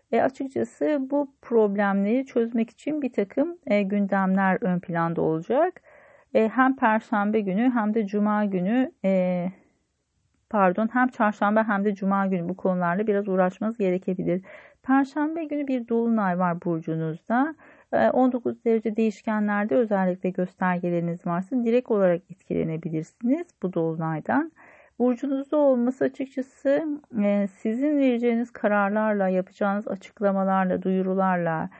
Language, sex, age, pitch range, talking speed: Turkish, female, 40-59, 175-245 Hz, 115 wpm